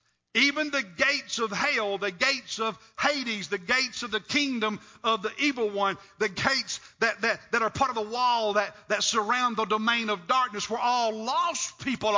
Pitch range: 200-255 Hz